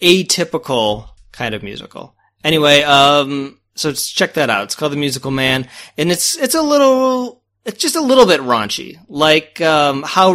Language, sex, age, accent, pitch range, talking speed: English, male, 20-39, American, 125-165 Hz, 170 wpm